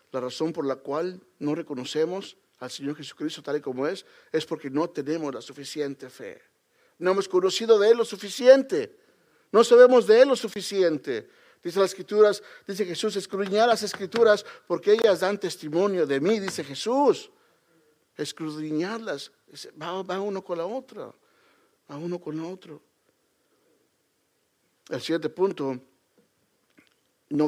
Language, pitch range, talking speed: Spanish, 150-205 Hz, 140 wpm